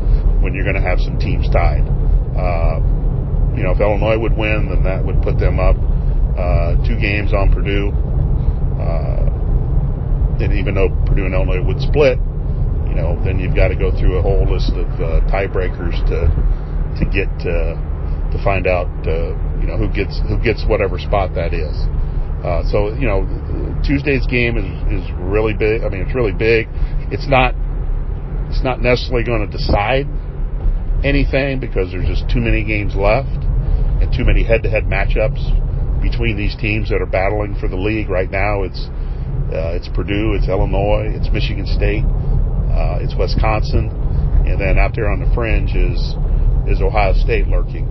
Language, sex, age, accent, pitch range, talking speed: English, male, 40-59, American, 75-110 Hz, 170 wpm